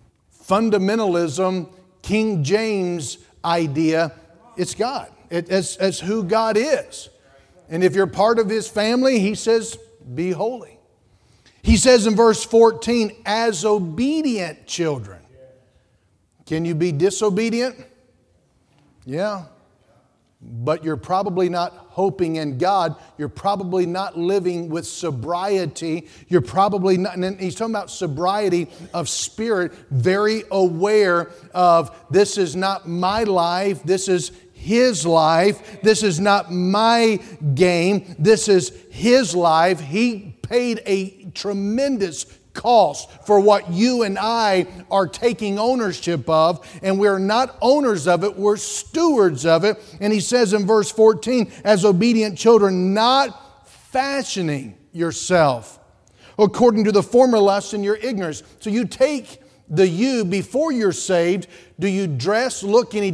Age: 40-59